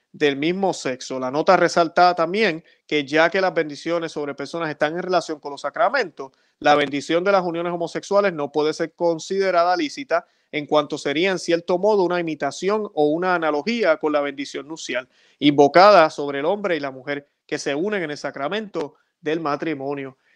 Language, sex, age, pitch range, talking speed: Spanish, male, 30-49, 145-180 Hz, 180 wpm